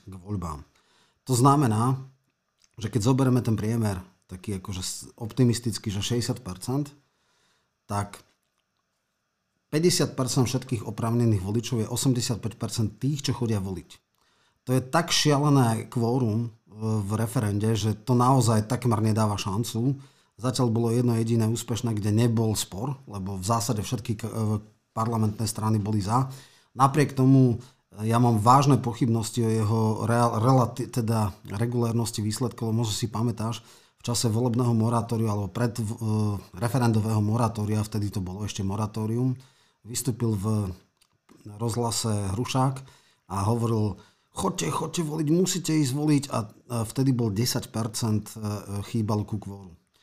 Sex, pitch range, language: male, 105-125 Hz, Slovak